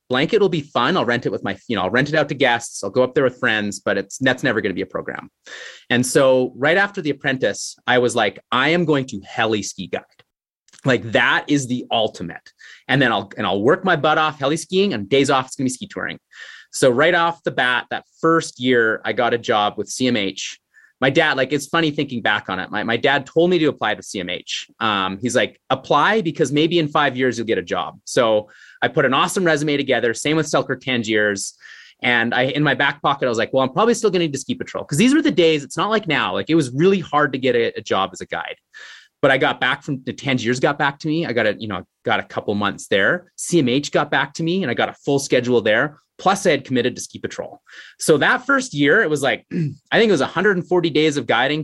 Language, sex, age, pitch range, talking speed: English, male, 30-49, 125-165 Hz, 260 wpm